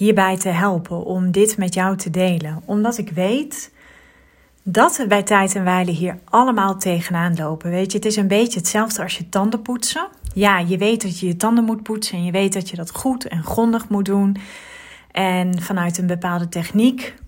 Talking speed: 200 wpm